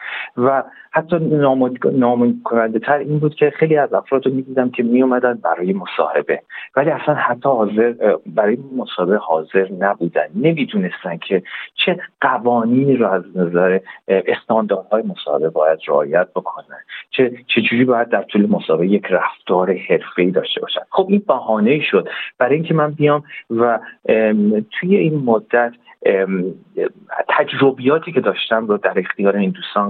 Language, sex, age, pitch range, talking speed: Persian, male, 40-59, 95-155 Hz, 140 wpm